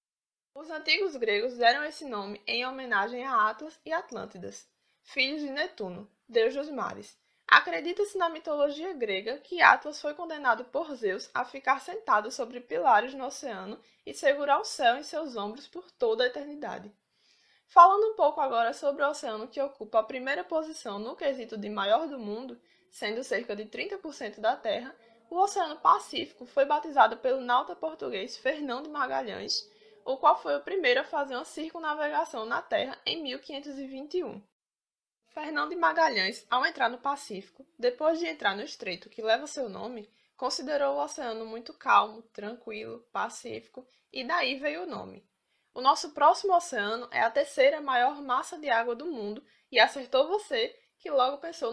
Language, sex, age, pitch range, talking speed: Portuguese, female, 20-39, 240-320 Hz, 160 wpm